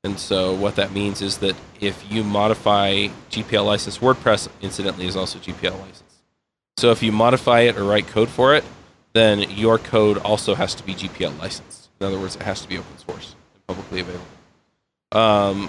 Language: English